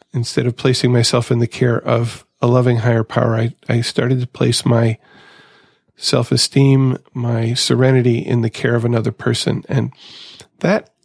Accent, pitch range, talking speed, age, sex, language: American, 115-135 Hz, 155 wpm, 40-59, male, English